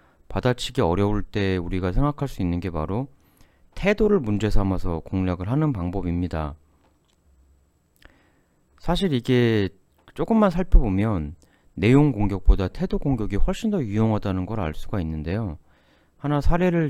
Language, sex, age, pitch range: Korean, male, 30-49, 85-125 Hz